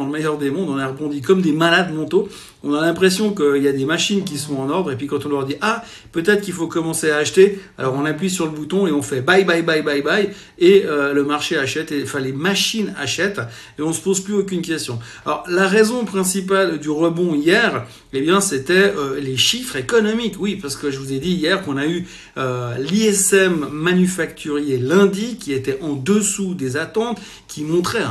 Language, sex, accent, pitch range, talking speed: French, male, French, 145-195 Hz, 225 wpm